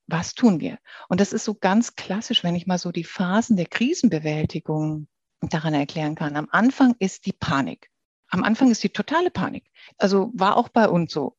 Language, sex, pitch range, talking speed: German, female, 170-230 Hz, 195 wpm